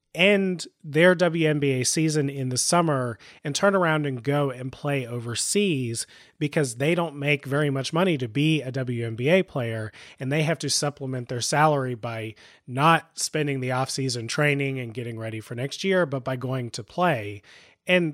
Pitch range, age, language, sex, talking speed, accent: 120-150 Hz, 30-49, English, male, 170 wpm, American